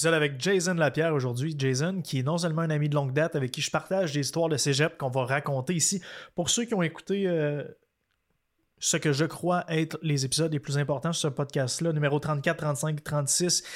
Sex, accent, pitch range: male, Canadian, 145-170 Hz